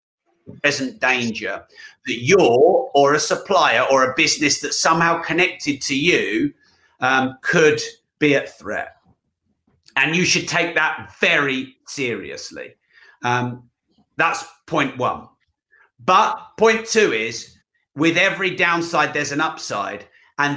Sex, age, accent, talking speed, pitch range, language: male, 40-59, British, 125 wpm, 135-170 Hz, English